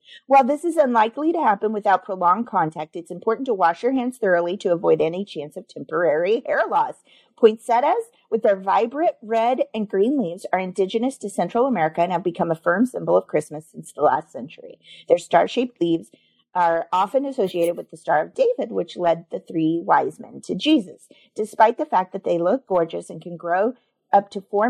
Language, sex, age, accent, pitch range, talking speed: English, female, 40-59, American, 180-255 Hz, 195 wpm